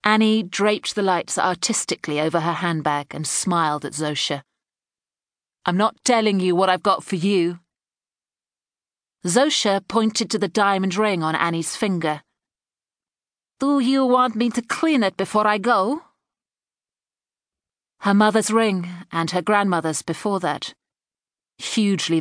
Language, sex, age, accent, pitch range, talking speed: English, female, 40-59, British, 165-215 Hz, 130 wpm